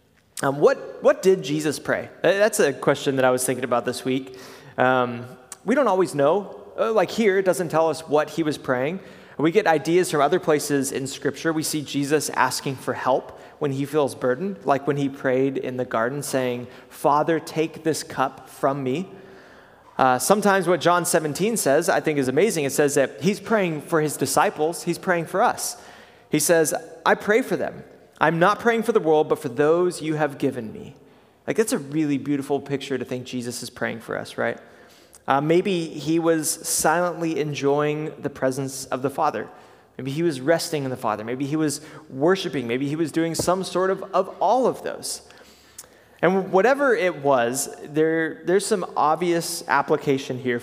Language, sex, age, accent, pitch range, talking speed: English, male, 20-39, American, 135-170 Hz, 190 wpm